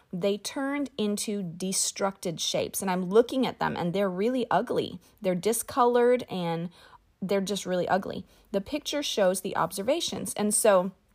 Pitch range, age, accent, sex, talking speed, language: 180-240 Hz, 30-49, American, female, 150 wpm, English